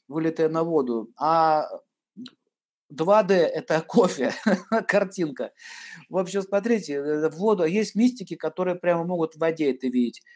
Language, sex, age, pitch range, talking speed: Russian, male, 50-69, 140-225 Hz, 135 wpm